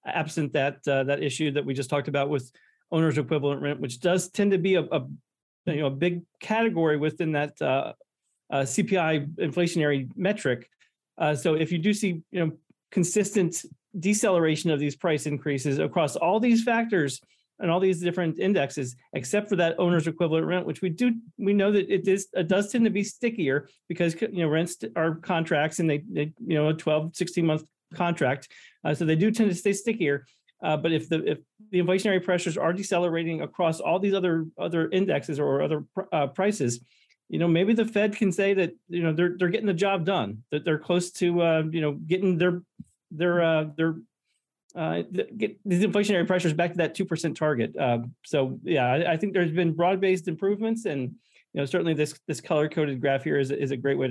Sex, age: male, 40-59